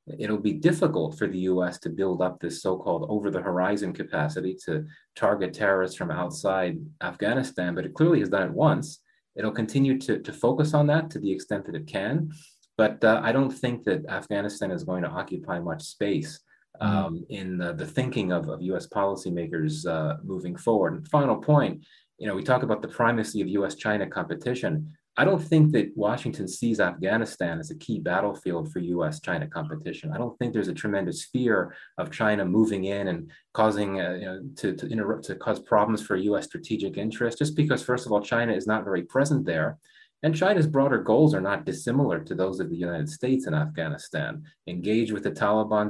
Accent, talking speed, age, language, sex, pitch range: American, 190 wpm, 30-49, English, male, 95-150 Hz